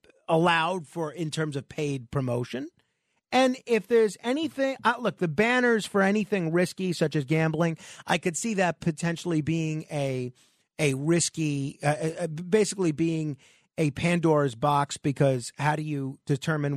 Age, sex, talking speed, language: 40-59, male, 145 wpm, English